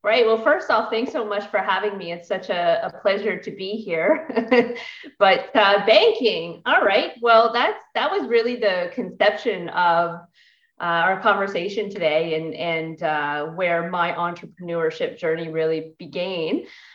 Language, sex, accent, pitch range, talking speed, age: English, female, American, 175-230 Hz, 155 wpm, 30-49